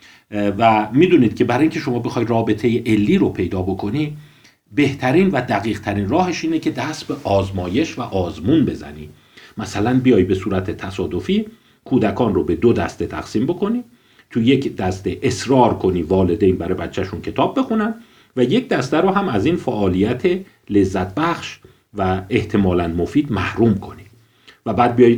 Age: 50-69